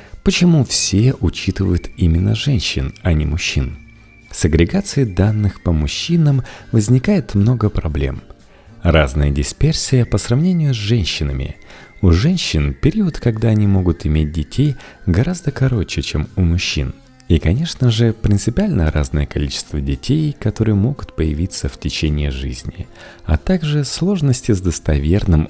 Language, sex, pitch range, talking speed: Russian, male, 75-115 Hz, 125 wpm